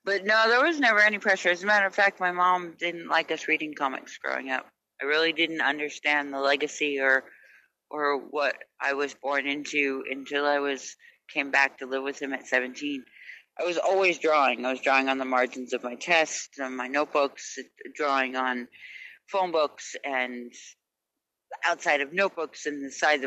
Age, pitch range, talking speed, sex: 40-59, 130-155 Hz, 185 wpm, female